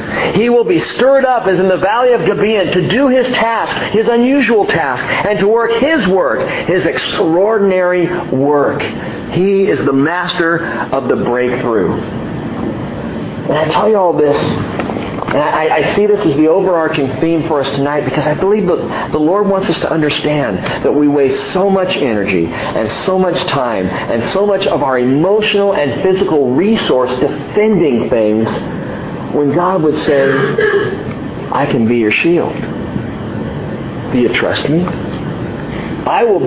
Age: 50-69